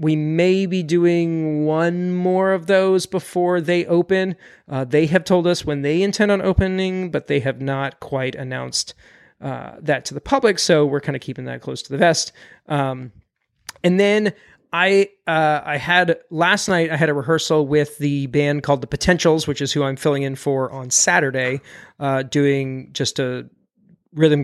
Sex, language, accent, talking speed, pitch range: male, English, American, 185 wpm, 140-180 Hz